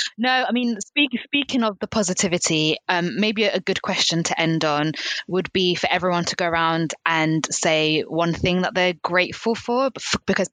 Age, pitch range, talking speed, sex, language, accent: 20-39, 155-185 Hz, 180 wpm, female, English, British